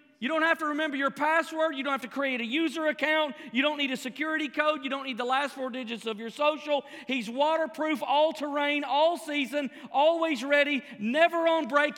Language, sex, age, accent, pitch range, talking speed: English, male, 40-59, American, 275-320 Hz, 200 wpm